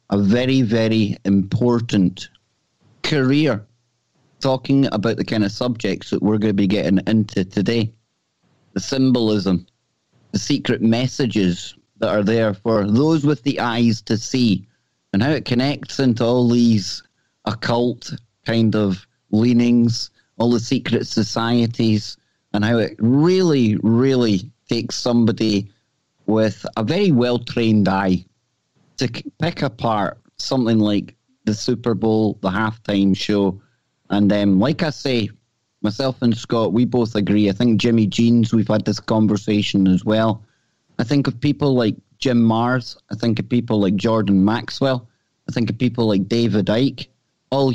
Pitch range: 105-125 Hz